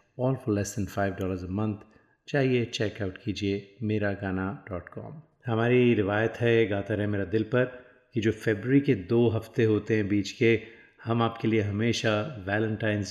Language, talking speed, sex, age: Hindi, 175 wpm, male, 30-49